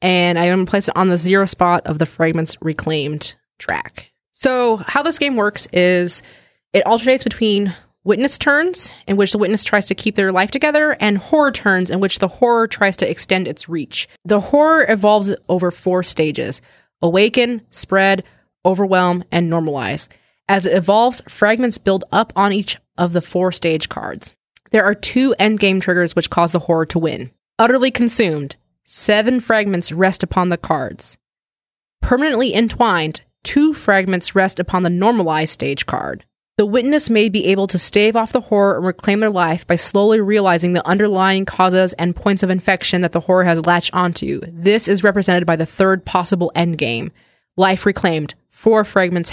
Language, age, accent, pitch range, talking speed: English, 20-39, American, 175-215 Hz, 175 wpm